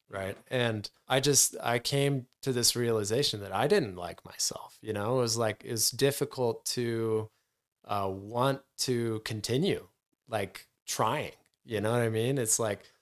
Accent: American